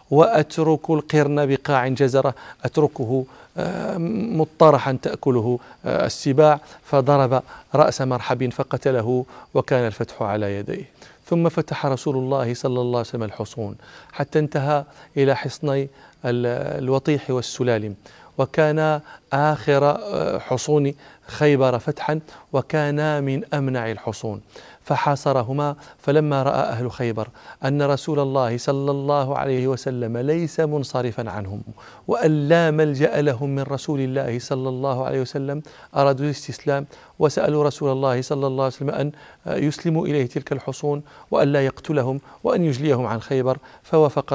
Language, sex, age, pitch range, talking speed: Arabic, male, 40-59, 130-150 Hz, 115 wpm